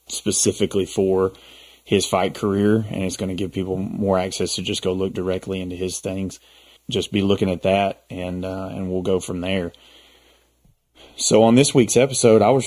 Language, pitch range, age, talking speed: English, 95-110 Hz, 30-49, 185 wpm